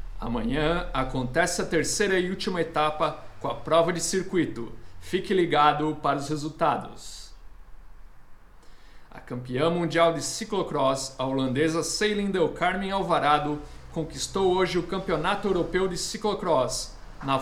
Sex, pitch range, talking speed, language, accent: male, 145-180 Hz, 125 wpm, Portuguese, Brazilian